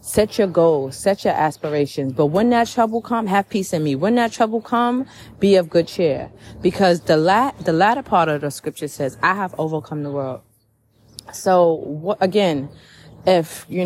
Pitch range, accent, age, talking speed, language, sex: 135-190 Hz, American, 30-49, 185 wpm, English, female